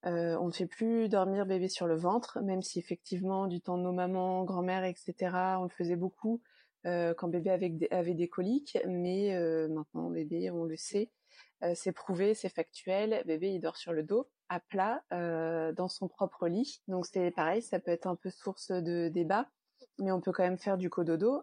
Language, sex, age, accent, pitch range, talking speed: French, female, 20-39, French, 170-200 Hz, 215 wpm